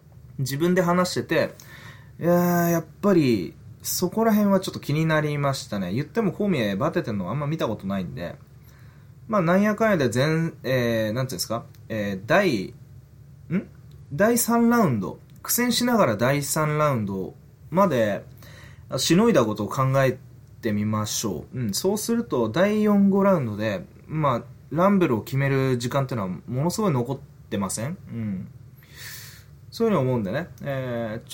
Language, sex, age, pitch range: Japanese, male, 20-39, 120-170 Hz